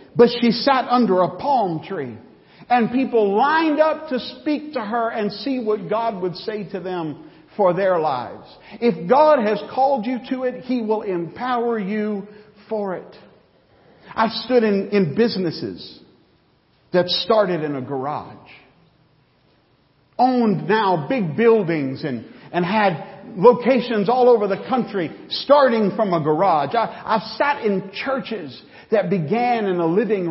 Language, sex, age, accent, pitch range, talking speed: English, male, 50-69, American, 180-230 Hz, 145 wpm